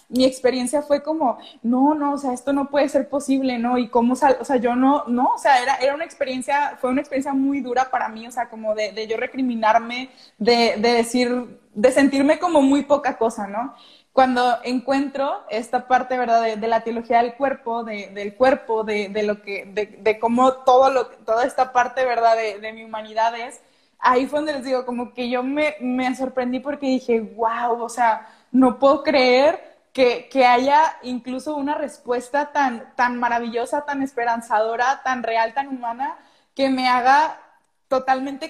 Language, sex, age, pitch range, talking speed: Spanish, female, 20-39, 235-275 Hz, 190 wpm